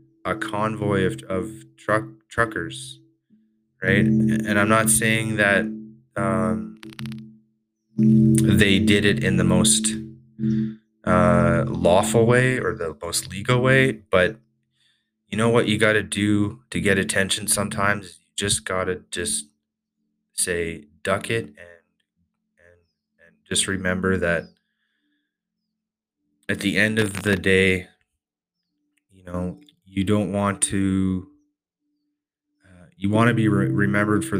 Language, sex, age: English, male, 20-39